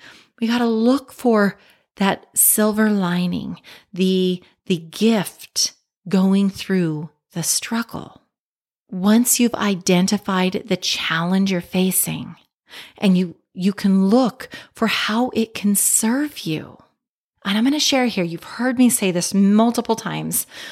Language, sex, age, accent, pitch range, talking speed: English, female, 30-49, American, 180-225 Hz, 135 wpm